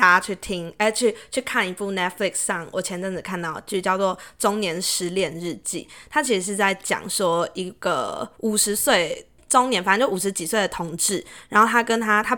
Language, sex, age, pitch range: Chinese, female, 20-39, 185-220 Hz